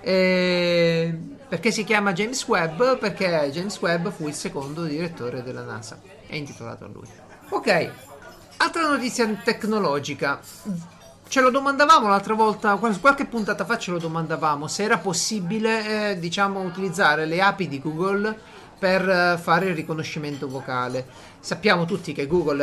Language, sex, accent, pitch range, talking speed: Italian, male, native, 145-210 Hz, 140 wpm